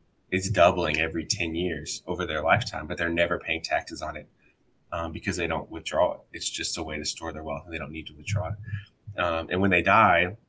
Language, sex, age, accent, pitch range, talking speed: English, male, 20-39, American, 80-100 Hz, 235 wpm